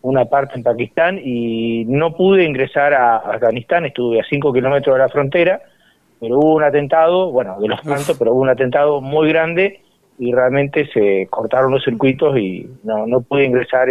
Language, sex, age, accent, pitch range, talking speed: Spanish, male, 40-59, Argentinian, 125-165 Hz, 180 wpm